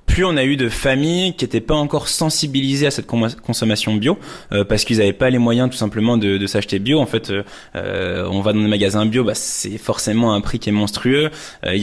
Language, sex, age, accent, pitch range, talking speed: French, male, 20-39, French, 105-135 Hz, 240 wpm